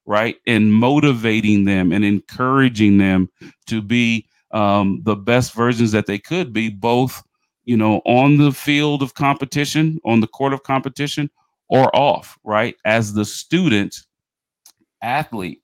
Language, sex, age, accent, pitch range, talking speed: English, male, 40-59, American, 105-135 Hz, 140 wpm